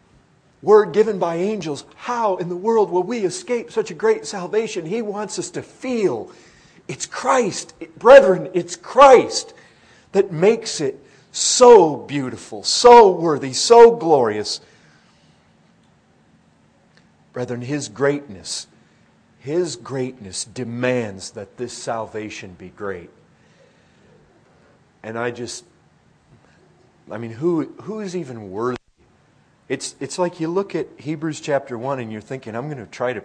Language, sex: English, male